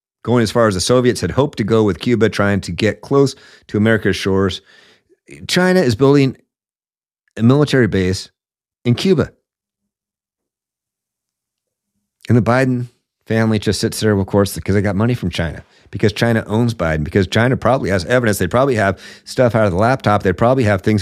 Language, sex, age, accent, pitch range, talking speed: English, male, 50-69, American, 95-120 Hz, 180 wpm